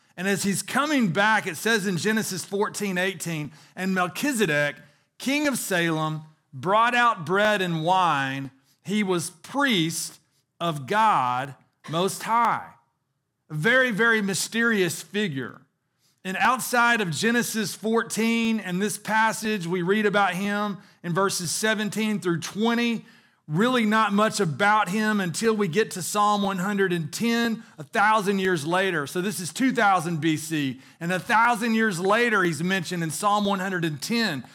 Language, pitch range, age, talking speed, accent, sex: English, 165-220 Hz, 40-59, 140 wpm, American, male